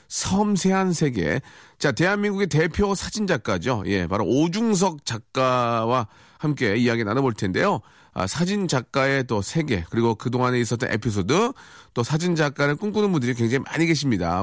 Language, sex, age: Korean, male, 40-59